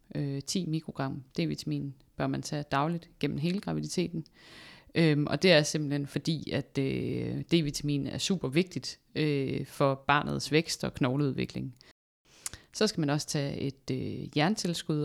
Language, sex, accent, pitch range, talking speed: Danish, female, native, 135-155 Hz, 130 wpm